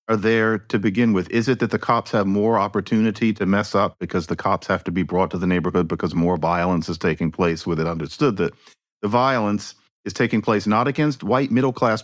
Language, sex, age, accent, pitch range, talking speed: English, male, 50-69, American, 95-120 Hz, 225 wpm